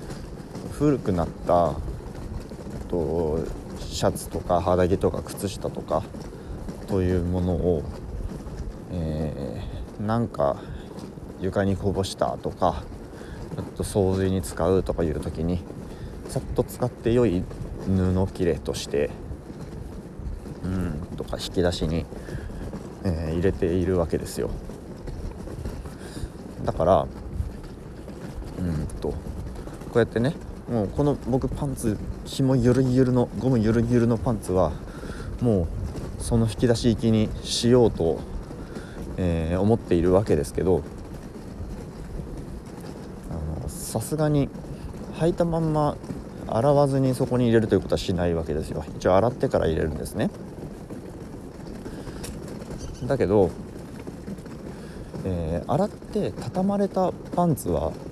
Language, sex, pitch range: Japanese, male, 85-120 Hz